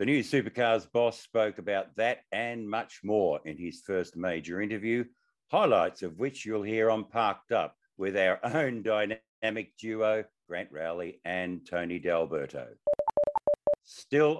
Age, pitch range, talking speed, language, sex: 50-69, 90-110 Hz, 140 wpm, English, male